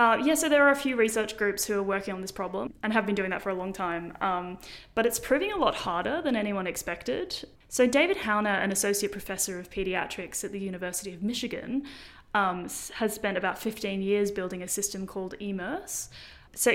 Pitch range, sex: 185-215 Hz, female